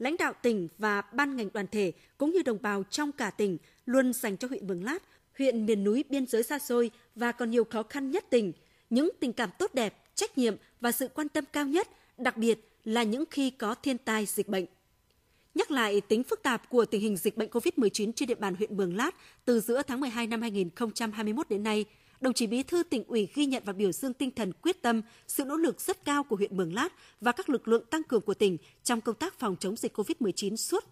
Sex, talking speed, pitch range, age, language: female, 240 wpm, 210-275 Hz, 20-39, Vietnamese